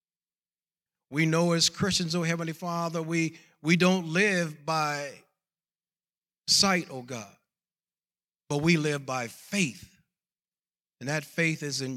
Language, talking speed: English, 125 wpm